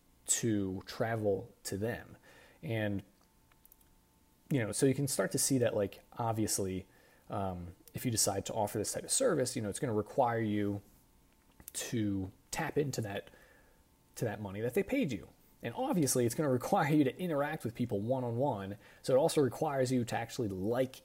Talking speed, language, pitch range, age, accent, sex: 180 wpm, English, 100-130 Hz, 30-49, American, male